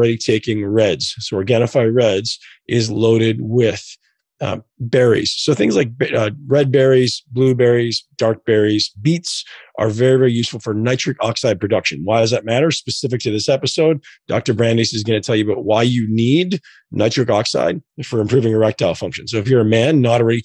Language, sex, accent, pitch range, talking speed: English, male, American, 110-130 Hz, 180 wpm